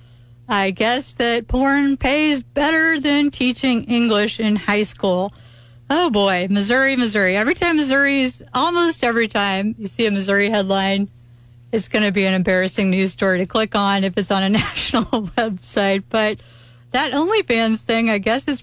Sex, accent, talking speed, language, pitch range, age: female, American, 165 wpm, English, 195-245 Hz, 30-49